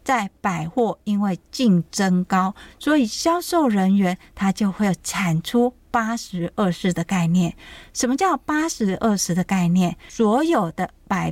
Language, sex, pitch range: Chinese, female, 180-240 Hz